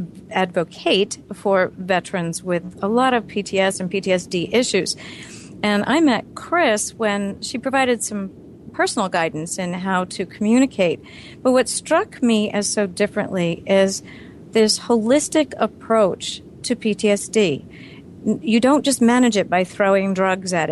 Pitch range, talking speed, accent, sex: 180-225 Hz, 135 wpm, American, female